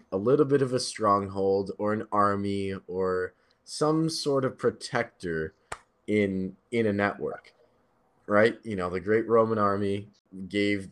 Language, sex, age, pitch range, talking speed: English, male, 20-39, 95-125 Hz, 145 wpm